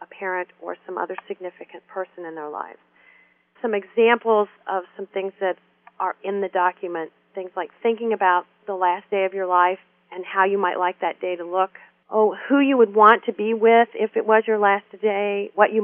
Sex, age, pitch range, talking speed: female, 40-59, 185-215 Hz, 205 wpm